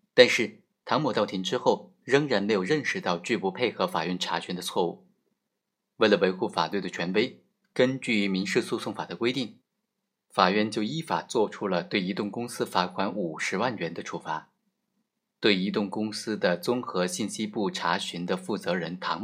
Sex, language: male, Chinese